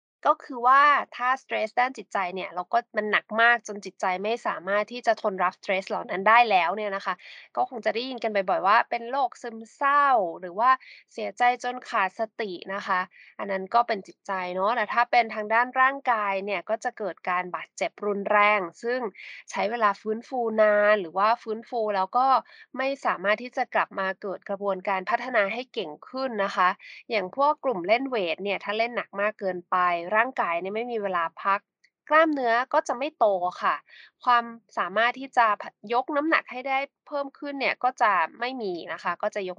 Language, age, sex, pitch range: Thai, 20-39, female, 195-255 Hz